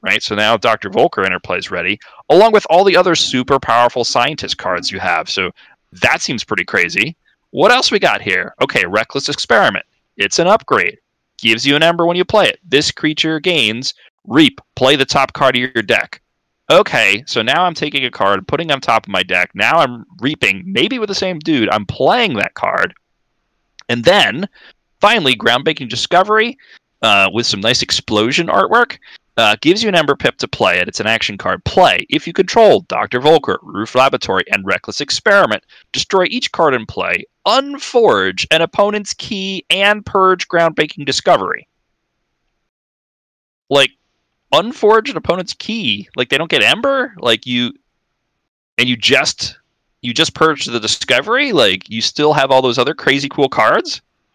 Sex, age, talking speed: male, 30-49, 175 wpm